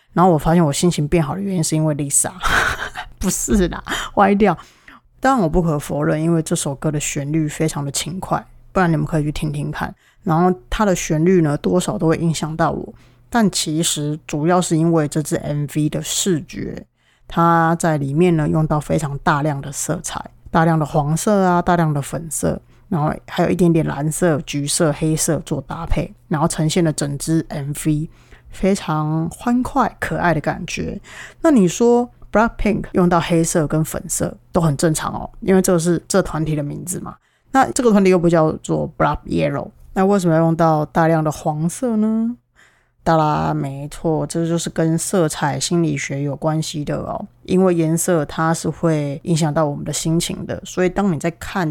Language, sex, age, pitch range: Chinese, female, 20-39, 155-180 Hz